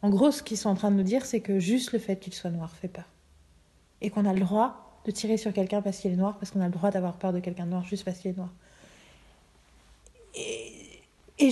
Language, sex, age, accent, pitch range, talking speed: French, female, 40-59, French, 190-235 Hz, 265 wpm